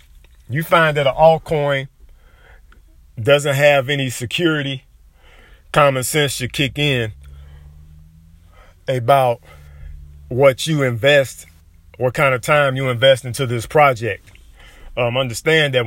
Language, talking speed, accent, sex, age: English, 115 wpm, American, male, 40-59